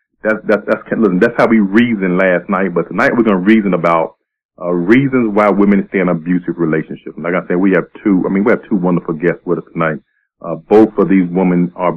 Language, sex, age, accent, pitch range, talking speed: English, male, 40-59, American, 90-110 Hz, 235 wpm